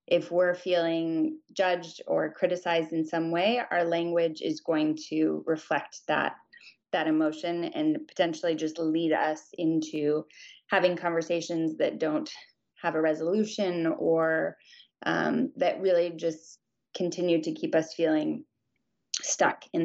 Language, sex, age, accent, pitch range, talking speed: English, female, 20-39, American, 160-180 Hz, 130 wpm